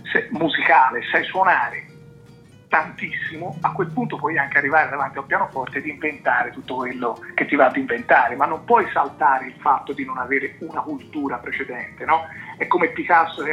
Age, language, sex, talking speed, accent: 40-59, Italian, male, 175 wpm, native